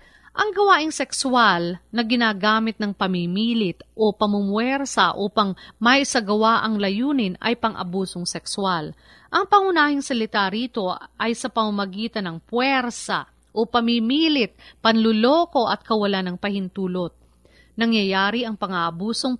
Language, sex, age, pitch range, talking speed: Filipino, female, 40-59, 195-255 Hz, 110 wpm